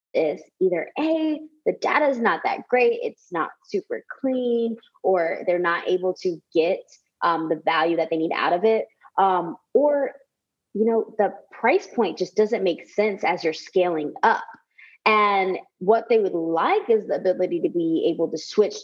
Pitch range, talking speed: 175-275 Hz, 180 wpm